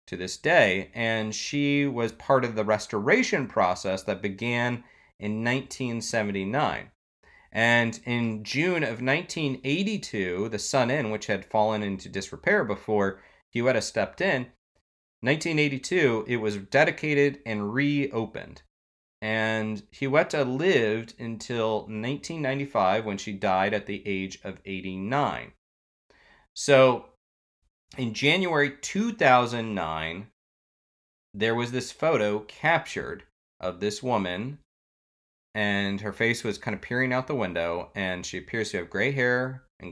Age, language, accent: 30-49, English, American